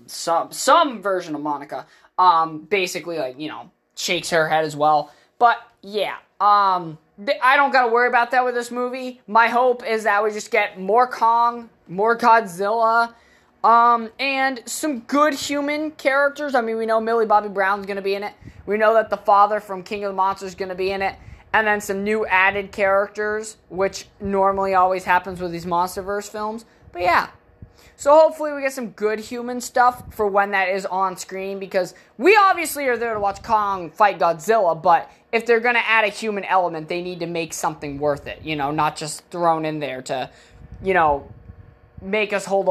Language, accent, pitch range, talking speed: English, American, 185-235 Hz, 195 wpm